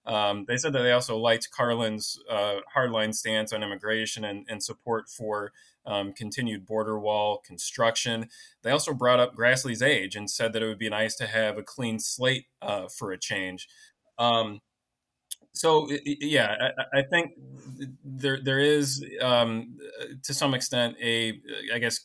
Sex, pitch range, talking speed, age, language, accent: male, 105-120 Hz, 165 wpm, 20-39, English, American